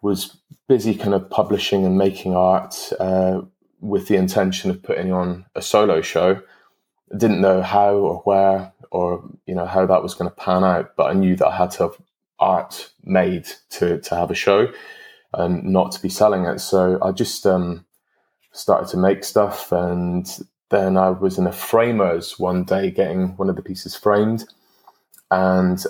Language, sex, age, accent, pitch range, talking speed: English, male, 20-39, British, 90-95 Hz, 185 wpm